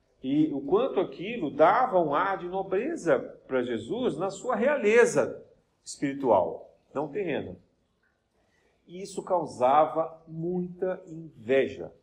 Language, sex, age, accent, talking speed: Portuguese, male, 40-59, Brazilian, 110 wpm